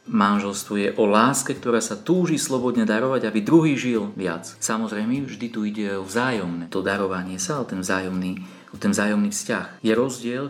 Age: 40-59